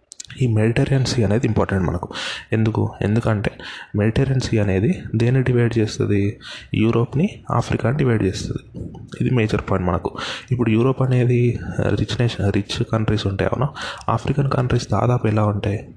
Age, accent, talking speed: 20-39, native, 130 wpm